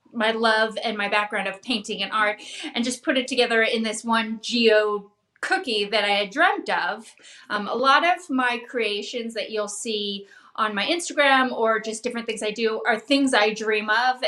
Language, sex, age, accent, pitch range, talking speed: English, female, 30-49, American, 210-255 Hz, 200 wpm